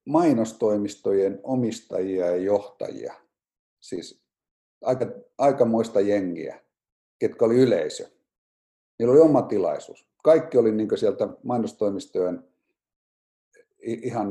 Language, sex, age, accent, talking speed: Finnish, male, 50-69, native, 90 wpm